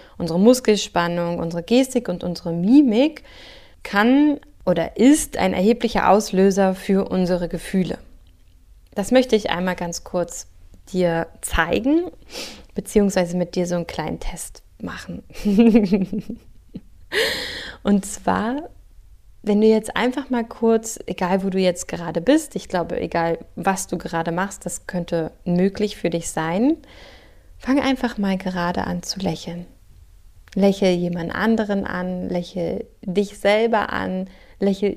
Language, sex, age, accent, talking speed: German, female, 20-39, German, 130 wpm